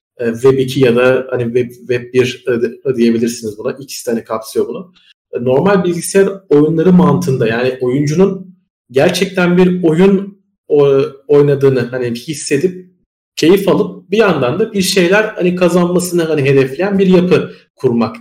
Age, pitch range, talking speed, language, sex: 40-59, 130-180 Hz, 135 wpm, Turkish, male